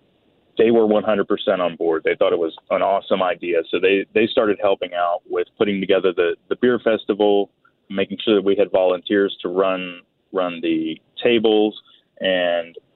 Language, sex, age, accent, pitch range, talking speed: English, male, 30-49, American, 95-130 Hz, 175 wpm